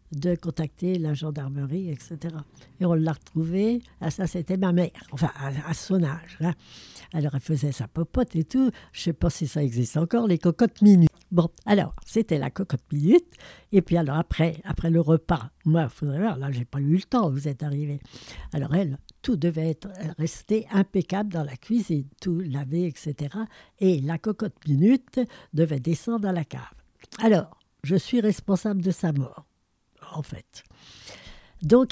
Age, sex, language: 60-79, female, French